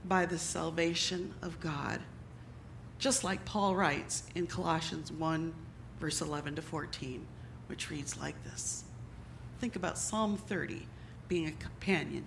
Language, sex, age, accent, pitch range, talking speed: English, female, 50-69, American, 175-245 Hz, 130 wpm